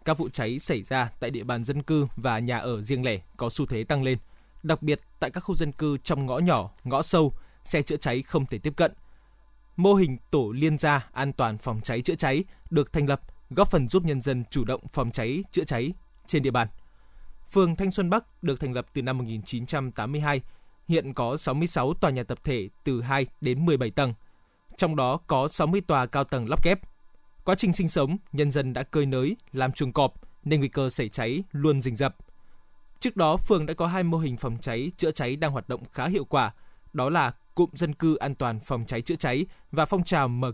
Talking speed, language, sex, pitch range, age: 225 wpm, Vietnamese, male, 130-160 Hz, 20-39